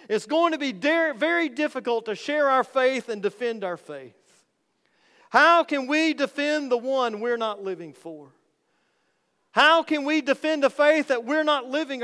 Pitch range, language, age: 195-265 Hz, English, 40-59